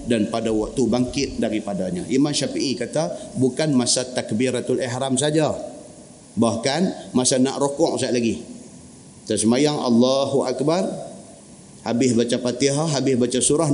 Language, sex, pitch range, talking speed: Malay, male, 130-175 Hz, 120 wpm